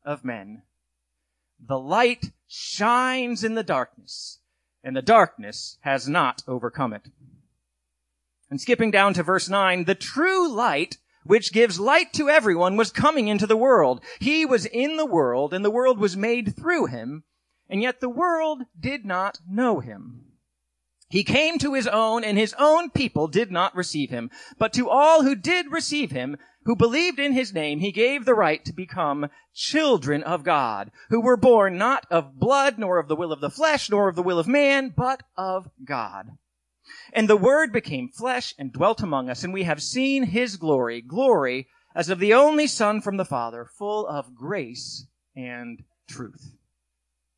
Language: English